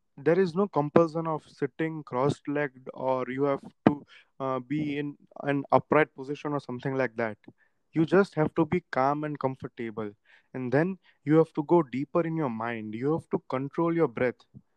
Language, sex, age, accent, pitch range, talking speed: English, male, 20-39, Indian, 130-170 Hz, 185 wpm